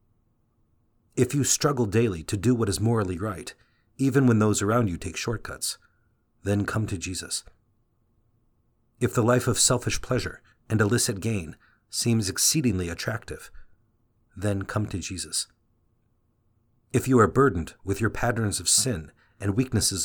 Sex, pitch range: male, 100-120 Hz